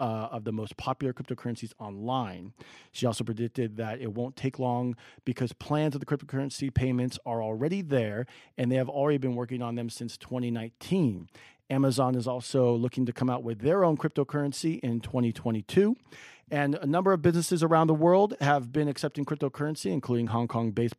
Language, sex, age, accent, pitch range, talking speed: English, male, 40-59, American, 115-150 Hz, 175 wpm